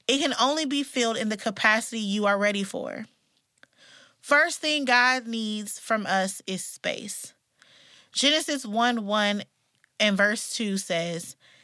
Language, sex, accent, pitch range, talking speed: English, female, American, 205-260 Hz, 140 wpm